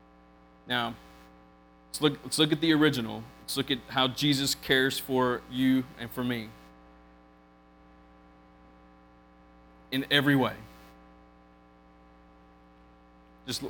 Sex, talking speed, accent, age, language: male, 95 wpm, American, 30-49, English